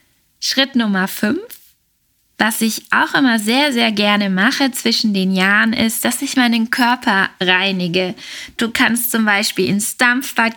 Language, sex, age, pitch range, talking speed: German, female, 20-39, 195-240 Hz, 150 wpm